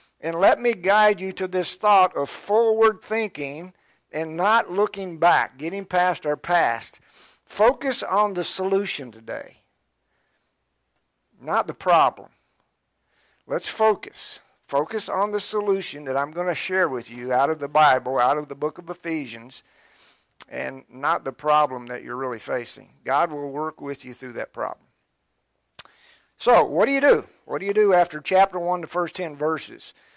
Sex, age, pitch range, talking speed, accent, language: male, 60-79, 145-195 Hz, 165 wpm, American, English